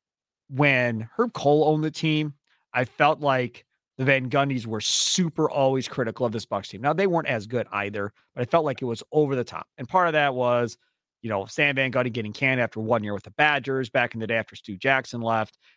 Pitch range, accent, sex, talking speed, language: 120-150 Hz, American, male, 230 wpm, English